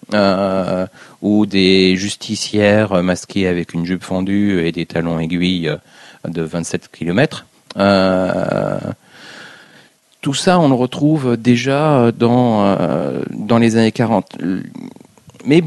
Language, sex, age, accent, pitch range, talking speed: French, male, 40-59, French, 90-115 Hz, 110 wpm